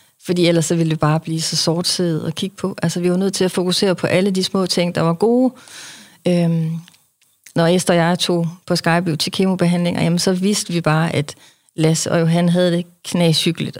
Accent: native